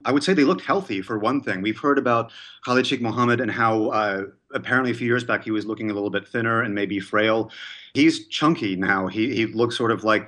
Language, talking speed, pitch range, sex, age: English, 245 wpm, 95-120 Hz, male, 30-49